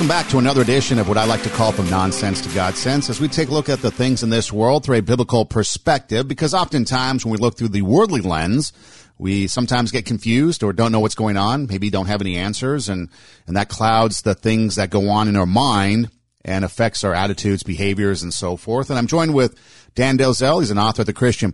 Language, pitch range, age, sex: English, 100-130 Hz, 50-69, male